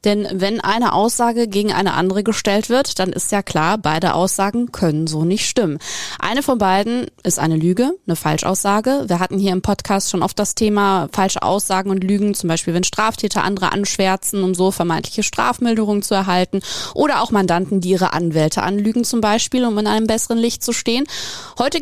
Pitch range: 180-230 Hz